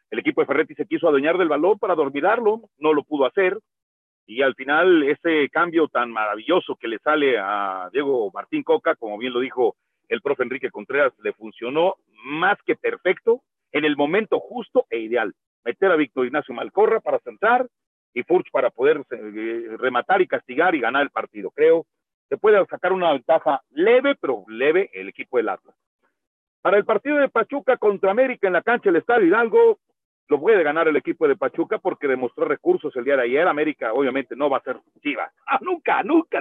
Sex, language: male, Spanish